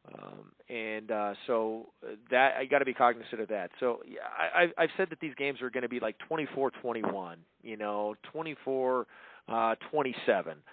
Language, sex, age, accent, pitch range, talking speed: English, male, 40-59, American, 110-130 Hz, 180 wpm